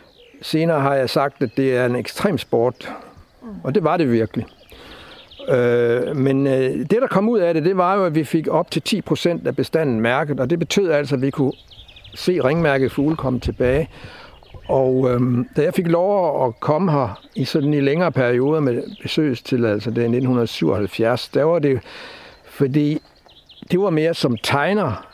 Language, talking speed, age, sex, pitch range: Danish, 185 wpm, 60-79, male, 120-160 Hz